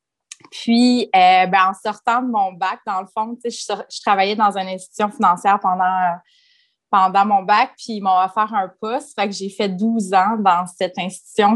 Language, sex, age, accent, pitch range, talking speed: French, female, 20-39, Canadian, 185-230 Hz, 200 wpm